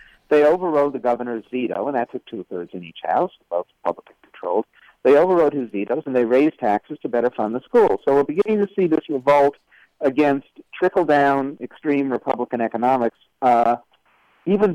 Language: English